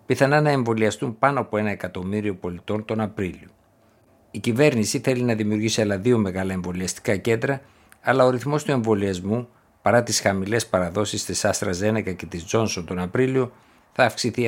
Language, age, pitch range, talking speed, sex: Greek, 60-79, 95-120 Hz, 160 wpm, male